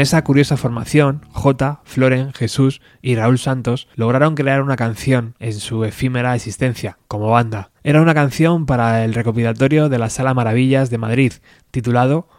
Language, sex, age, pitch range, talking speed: Spanish, male, 20-39, 115-140 Hz, 155 wpm